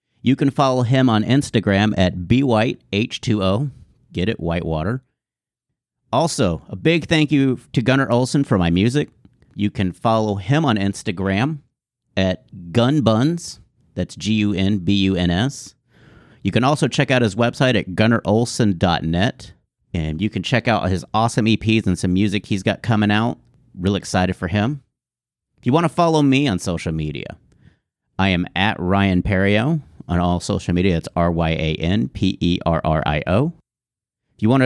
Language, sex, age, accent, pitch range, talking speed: English, male, 40-59, American, 95-130 Hz, 145 wpm